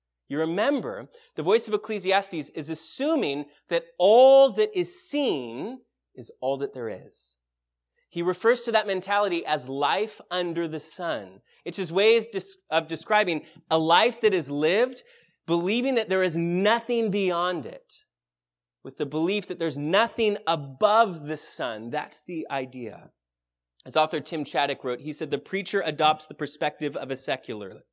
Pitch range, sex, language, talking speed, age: 140-210 Hz, male, English, 155 wpm, 30-49